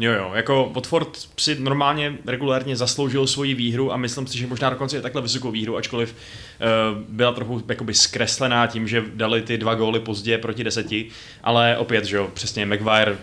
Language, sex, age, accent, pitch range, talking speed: Czech, male, 20-39, native, 110-130 Hz, 190 wpm